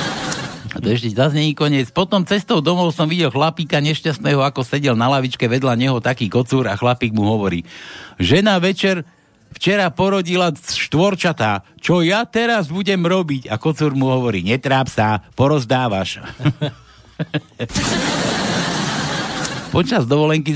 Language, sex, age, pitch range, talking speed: Slovak, male, 60-79, 125-160 Hz, 130 wpm